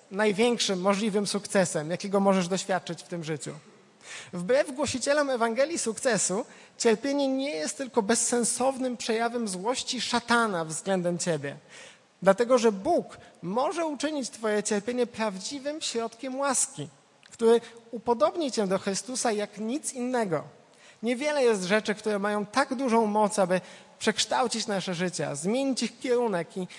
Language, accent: Polish, native